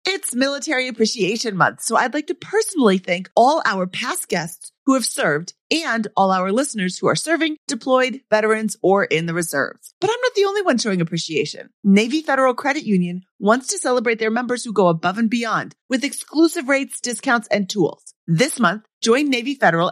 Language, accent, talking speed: English, American, 190 wpm